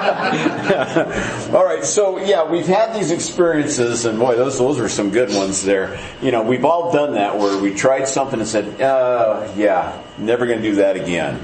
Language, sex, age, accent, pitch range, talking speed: English, male, 50-69, American, 100-135 Hz, 190 wpm